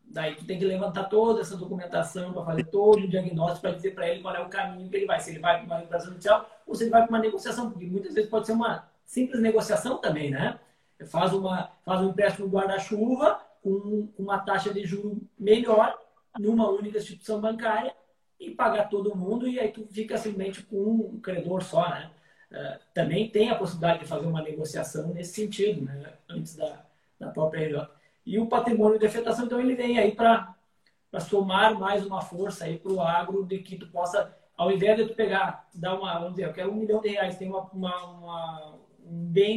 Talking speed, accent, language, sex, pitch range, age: 205 wpm, Brazilian, Portuguese, male, 175-220 Hz, 20-39